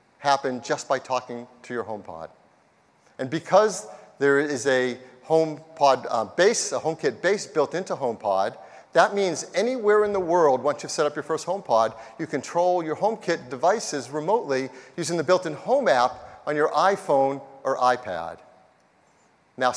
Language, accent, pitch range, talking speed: English, American, 125-170 Hz, 155 wpm